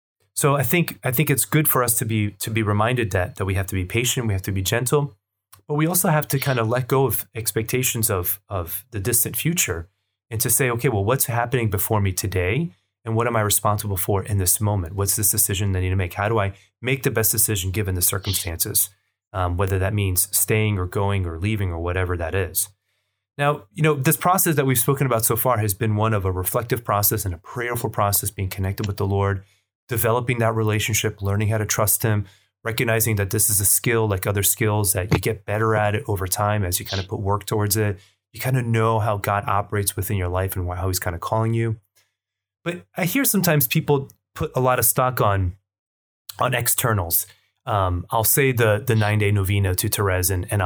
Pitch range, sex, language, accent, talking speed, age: 95-115 Hz, male, English, American, 225 wpm, 30-49